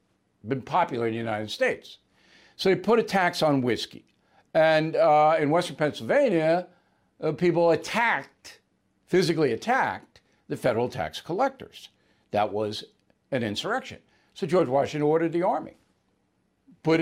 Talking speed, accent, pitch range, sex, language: 135 wpm, American, 105-165 Hz, male, English